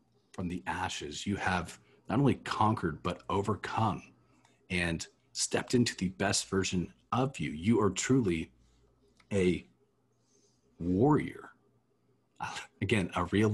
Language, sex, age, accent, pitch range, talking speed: English, male, 40-59, American, 95-120 Hz, 115 wpm